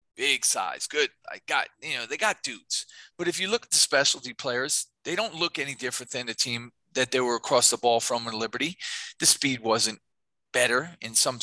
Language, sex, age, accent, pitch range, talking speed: English, male, 40-59, American, 120-145 Hz, 215 wpm